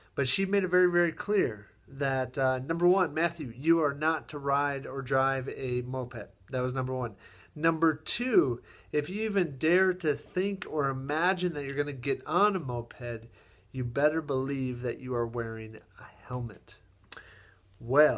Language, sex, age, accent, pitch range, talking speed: English, male, 40-59, American, 120-155 Hz, 175 wpm